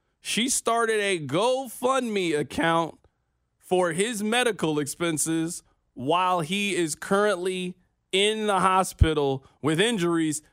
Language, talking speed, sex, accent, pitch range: English, 105 wpm, male, American, 140-210 Hz